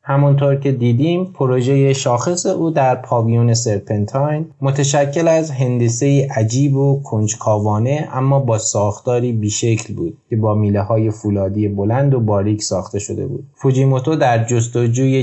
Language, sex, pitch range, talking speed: Persian, male, 110-140 Hz, 130 wpm